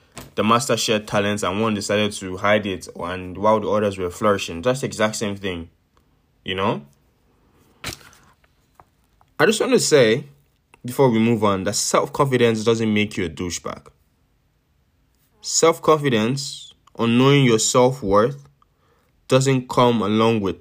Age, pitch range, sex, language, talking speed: 20-39, 95-135 Hz, male, English, 135 wpm